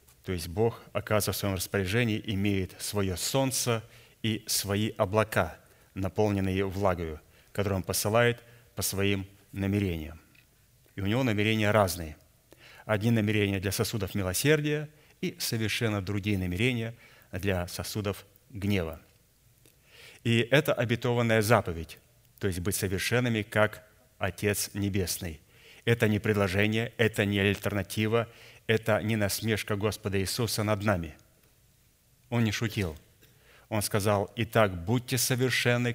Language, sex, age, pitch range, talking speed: Russian, male, 30-49, 100-120 Hz, 115 wpm